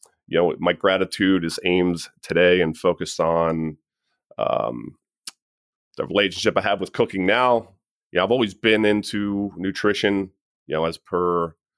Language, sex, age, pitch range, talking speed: English, male, 30-49, 85-100 Hz, 150 wpm